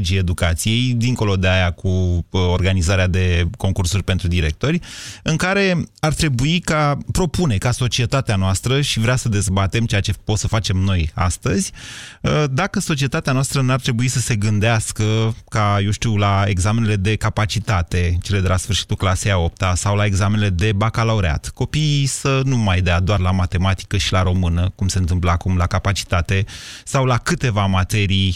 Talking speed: 165 wpm